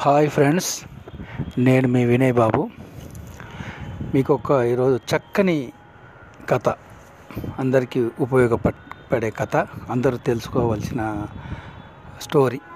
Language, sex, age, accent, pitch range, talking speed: Telugu, male, 60-79, native, 125-170 Hz, 75 wpm